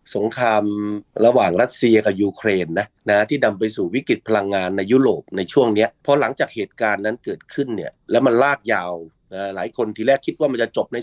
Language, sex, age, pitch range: Thai, male, 30-49, 105-135 Hz